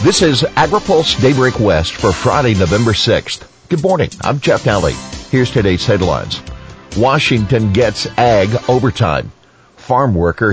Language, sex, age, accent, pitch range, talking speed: English, male, 50-69, American, 95-125 Hz, 130 wpm